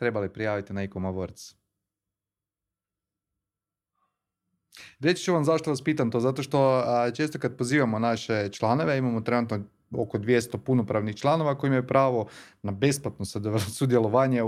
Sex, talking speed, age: male, 125 wpm, 30-49